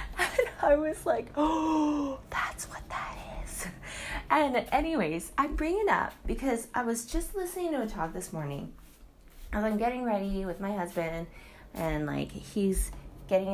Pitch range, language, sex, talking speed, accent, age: 170-240 Hz, English, female, 155 wpm, American, 20-39